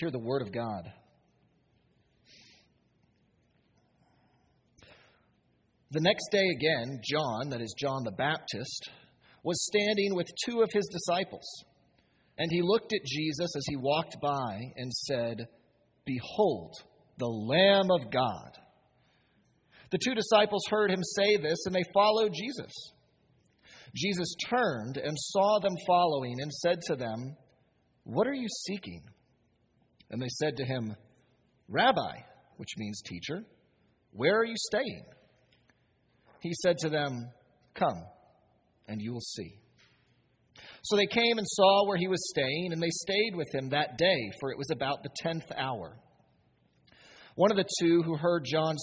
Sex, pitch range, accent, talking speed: male, 130-190 Hz, American, 140 wpm